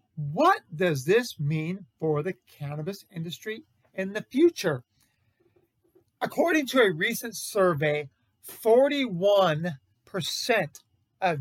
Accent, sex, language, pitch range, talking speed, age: American, male, English, 140-195 Hz, 95 wpm, 40-59